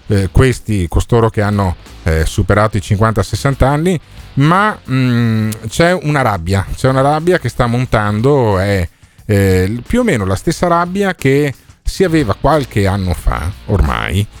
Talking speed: 145 wpm